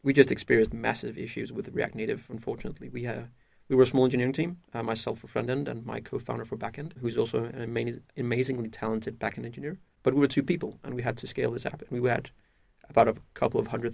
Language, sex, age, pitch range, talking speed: English, male, 30-49, 115-130 Hz, 245 wpm